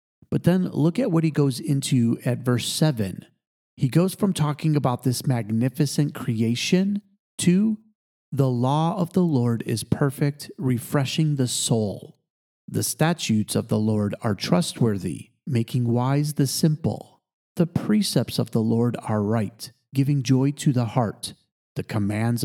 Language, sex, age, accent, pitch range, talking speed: English, male, 40-59, American, 120-155 Hz, 145 wpm